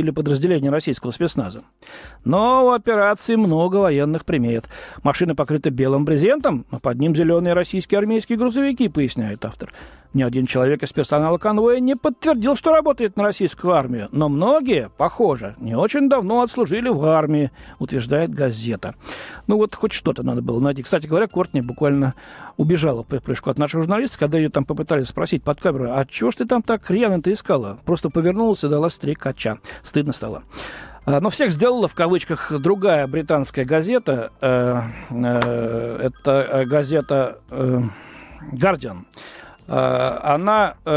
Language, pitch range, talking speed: Russian, 135-190 Hz, 145 wpm